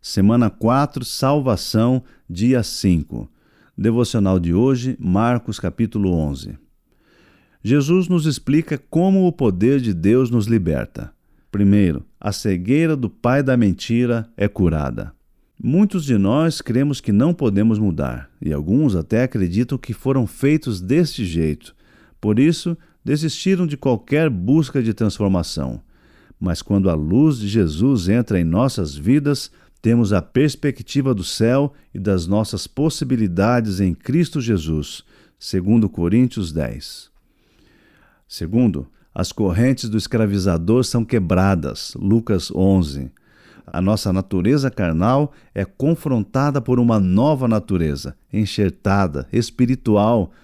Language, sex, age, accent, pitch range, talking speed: Portuguese, male, 50-69, Brazilian, 95-135 Hz, 120 wpm